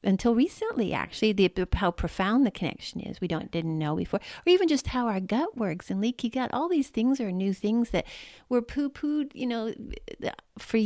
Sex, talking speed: female, 190 wpm